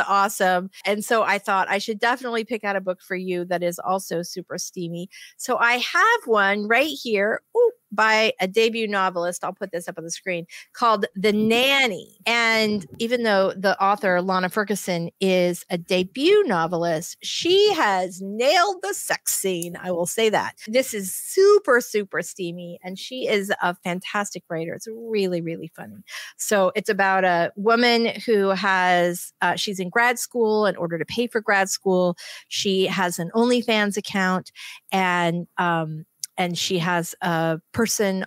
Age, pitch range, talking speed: 40-59, 180-225 Hz, 170 wpm